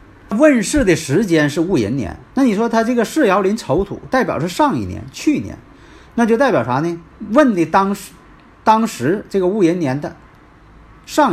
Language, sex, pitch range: Chinese, male, 130-210 Hz